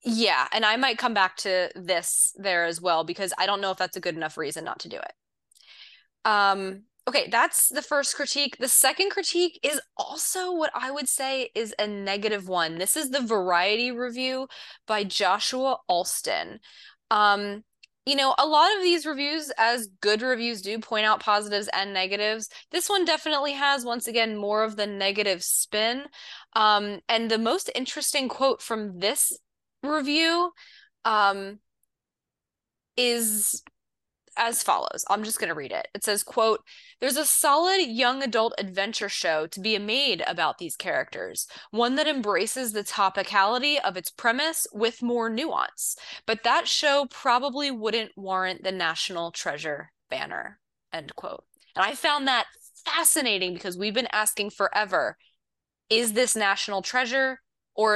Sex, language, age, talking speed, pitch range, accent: female, English, 20-39, 155 wpm, 200-280 Hz, American